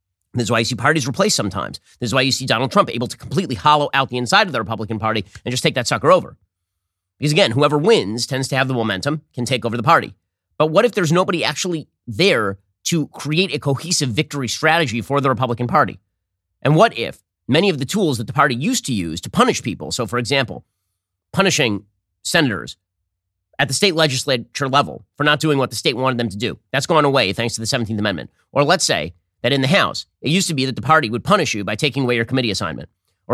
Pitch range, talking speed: 100-150 Hz, 235 wpm